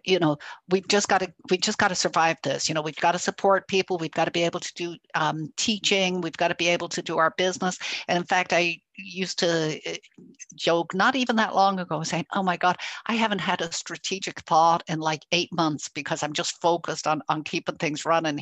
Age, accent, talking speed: 60-79, American, 235 wpm